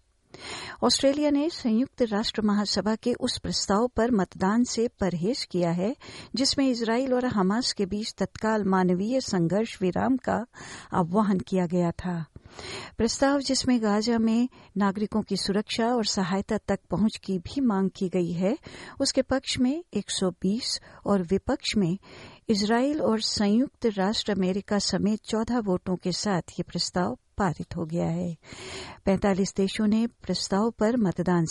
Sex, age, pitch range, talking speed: female, 50-69, 180-225 Hz, 145 wpm